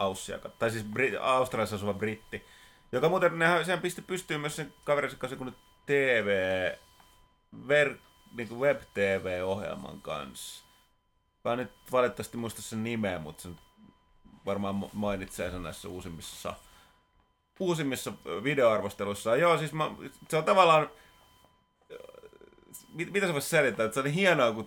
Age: 30-49